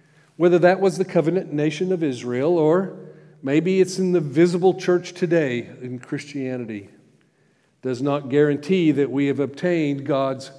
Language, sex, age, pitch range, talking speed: English, male, 50-69, 135-170 Hz, 145 wpm